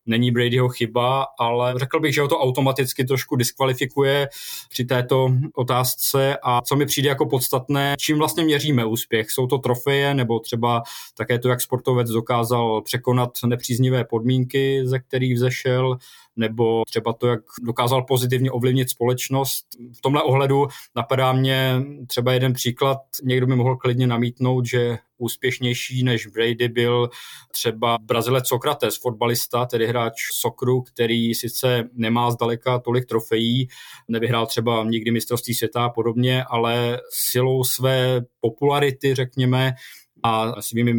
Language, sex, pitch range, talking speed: Czech, male, 120-130 Hz, 140 wpm